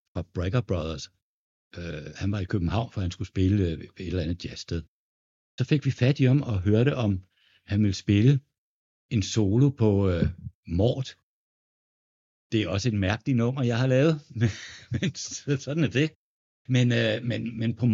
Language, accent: Danish, native